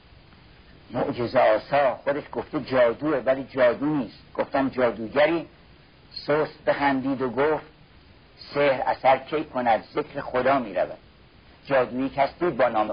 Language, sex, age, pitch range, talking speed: Persian, male, 60-79, 115-150 Hz, 135 wpm